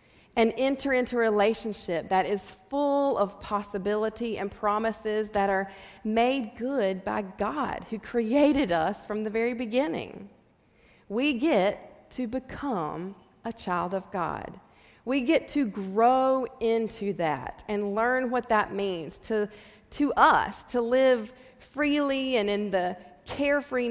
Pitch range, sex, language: 200-260 Hz, female, English